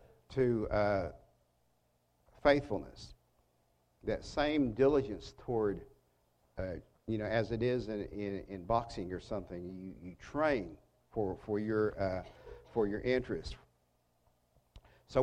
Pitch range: 100-130 Hz